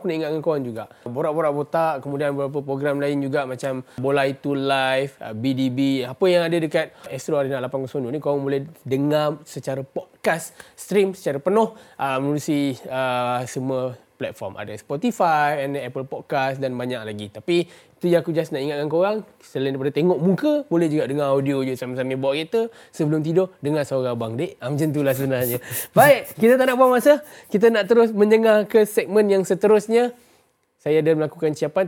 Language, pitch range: Malay, 135-175 Hz